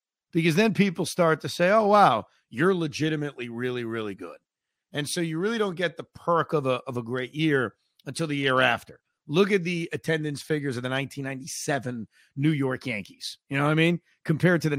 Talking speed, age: 205 wpm, 40-59